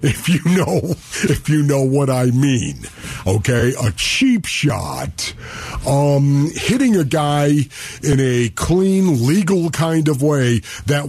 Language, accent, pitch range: English, American, 115-165 Hz